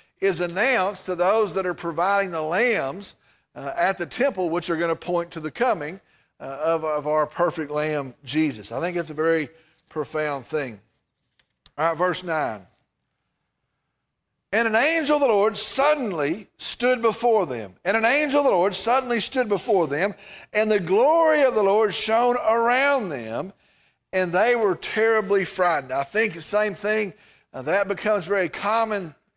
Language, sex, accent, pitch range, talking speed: English, male, American, 170-240 Hz, 170 wpm